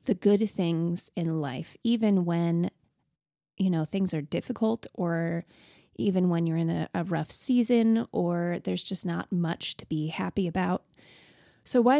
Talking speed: 160 wpm